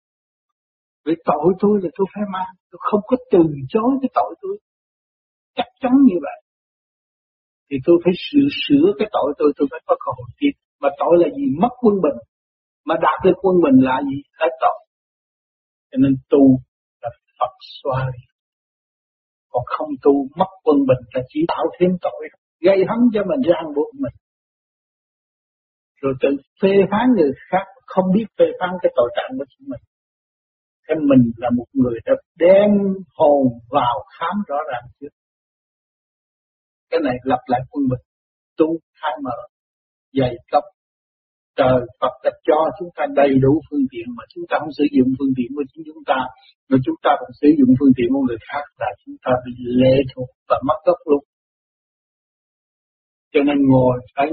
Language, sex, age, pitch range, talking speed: Vietnamese, male, 60-79, 130-195 Hz, 175 wpm